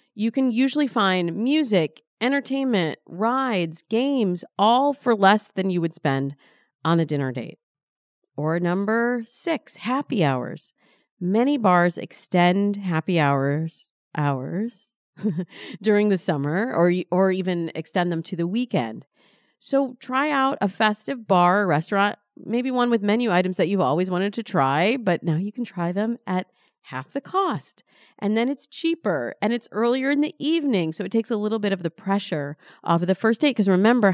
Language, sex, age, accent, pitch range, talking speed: English, female, 40-59, American, 170-230 Hz, 170 wpm